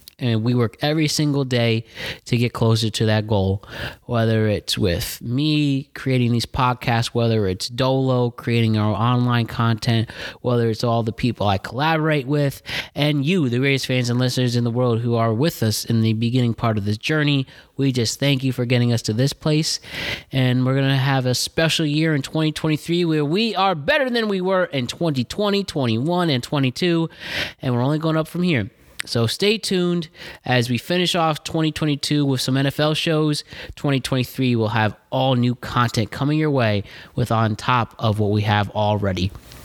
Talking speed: 185 wpm